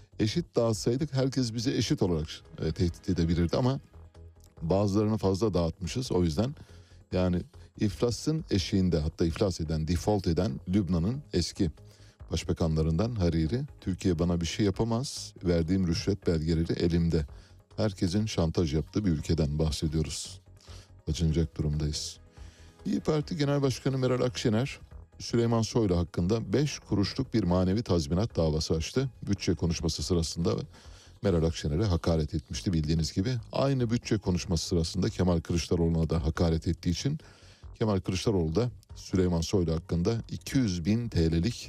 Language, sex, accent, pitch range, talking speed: Turkish, male, native, 85-110 Hz, 125 wpm